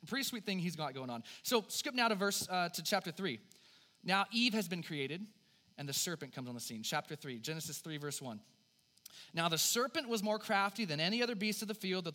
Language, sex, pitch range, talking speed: English, male, 145-215 Hz, 230 wpm